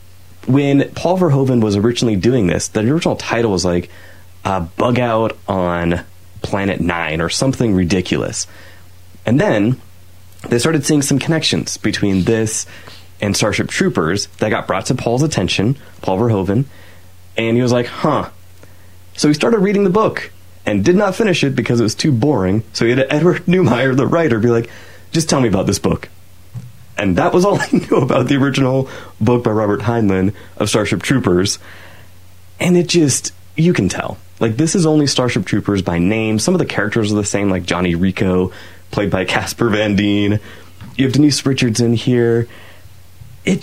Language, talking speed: English, 175 wpm